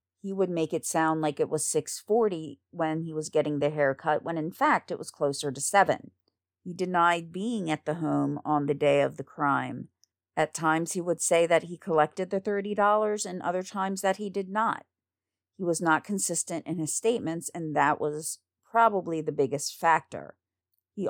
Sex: female